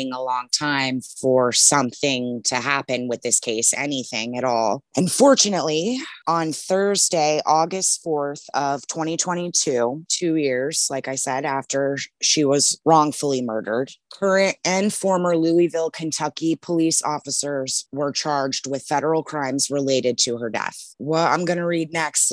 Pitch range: 140-170 Hz